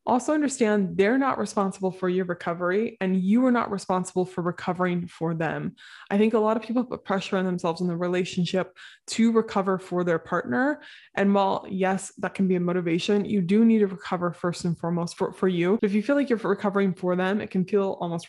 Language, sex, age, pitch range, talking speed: English, female, 20-39, 175-205 Hz, 215 wpm